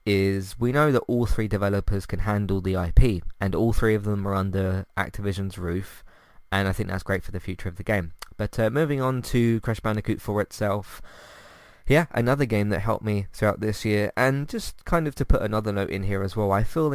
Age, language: 20-39, English